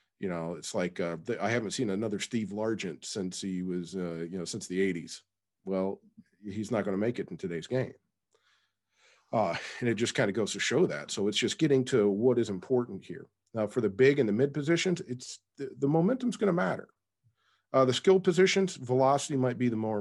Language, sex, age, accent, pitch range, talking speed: English, male, 40-59, American, 90-120 Hz, 220 wpm